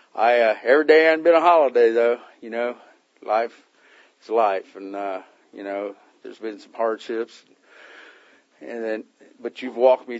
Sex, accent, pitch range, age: male, American, 100-125 Hz, 40-59